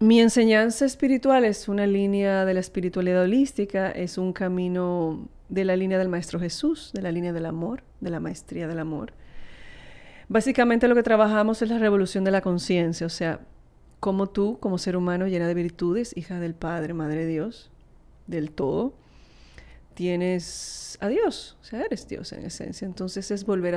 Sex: female